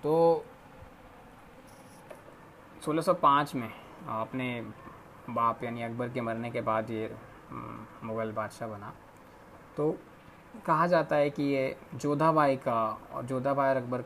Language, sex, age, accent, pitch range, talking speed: Hindi, male, 20-39, native, 120-140 Hz, 110 wpm